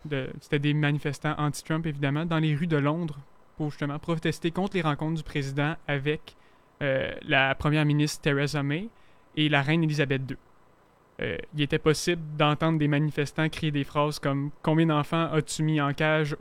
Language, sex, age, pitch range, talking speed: French, male, 20-39, 145-160 Hz, 180 wpm